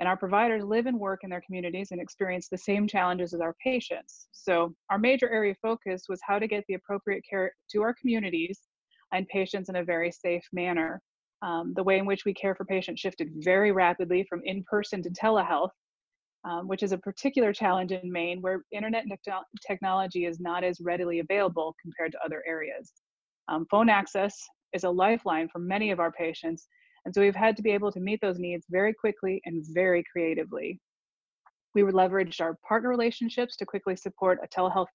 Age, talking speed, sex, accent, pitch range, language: 30-49, 195 wpm, female, American, 175-205 Hz, English